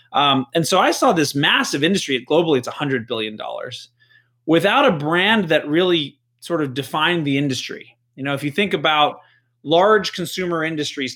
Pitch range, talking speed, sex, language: 130-175 Hz, 165 wpm, male, English